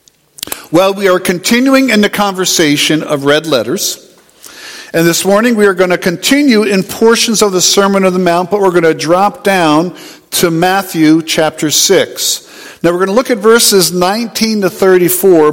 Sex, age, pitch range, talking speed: male, 50-69, 150-190 Hz, 180 wpm